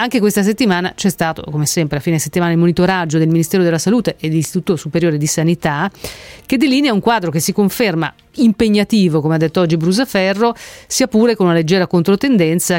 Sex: female